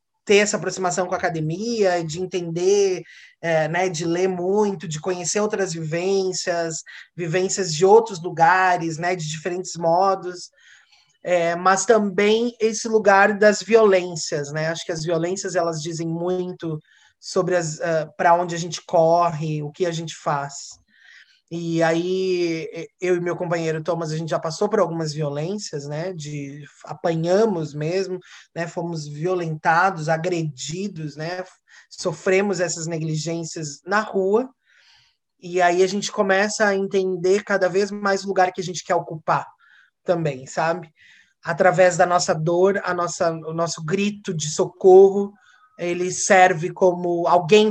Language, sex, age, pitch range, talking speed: Portuguese, male, 20-39, 165-190 Hz, 135 wpm